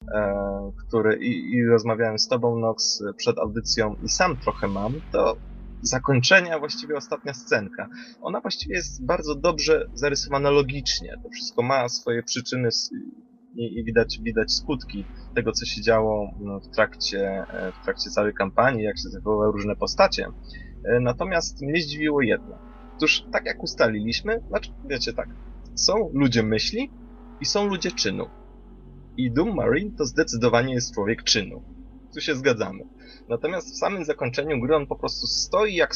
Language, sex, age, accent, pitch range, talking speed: Polish, male, 20-39, native, 105-145 Hz, 150 wpm